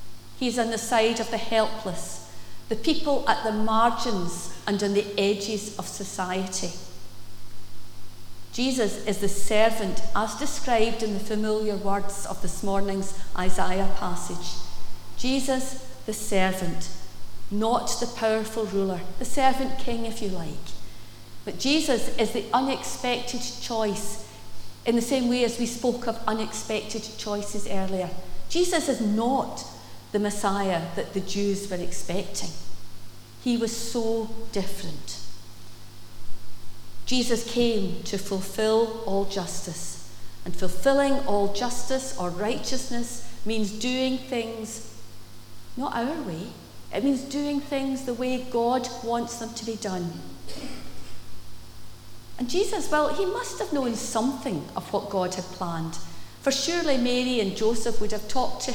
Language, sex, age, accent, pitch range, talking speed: English, female, 40-59, British, 180-240 Hz, 130 wpm